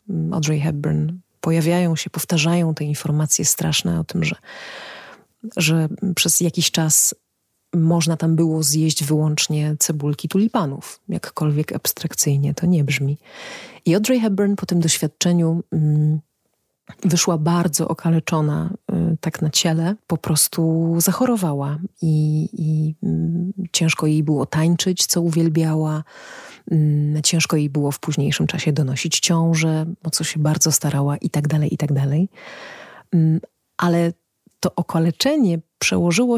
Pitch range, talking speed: 155-175 Hz, 120 wpm